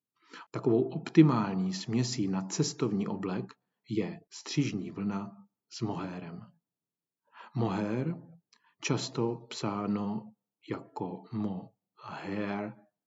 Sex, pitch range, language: male, 105-135 Hz, Czech